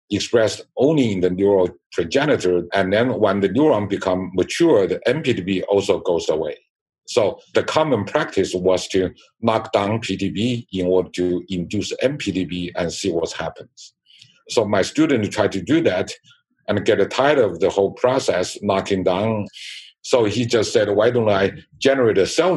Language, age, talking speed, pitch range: English, 50-69, 165 wpm, 95-135 Hz